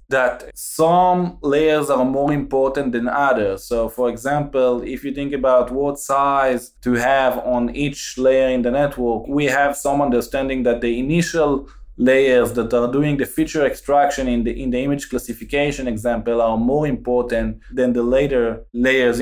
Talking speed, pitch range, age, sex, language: 165 wpm, 120-145 Hz, 20-39, male, English